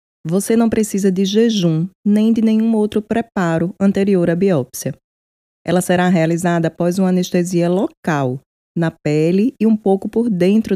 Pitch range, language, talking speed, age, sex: 170-210 Hz, Portuguese, 150 wpm, 20-39, female